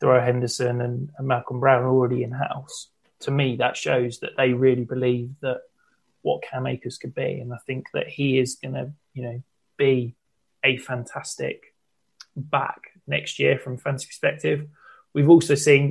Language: English